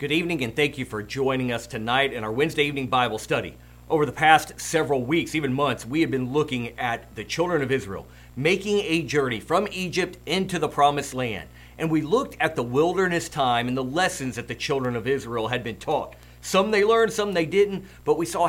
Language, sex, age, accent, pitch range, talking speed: English, male, 50-69, American, 120-170 Hz, 215 wpm